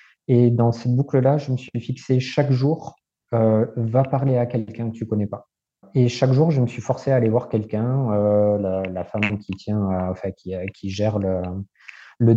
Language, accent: French, French